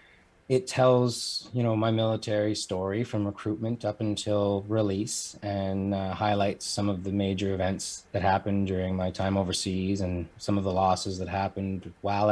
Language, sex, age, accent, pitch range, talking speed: English, male, 30-49, American, 95-105 Hz, 165 wpm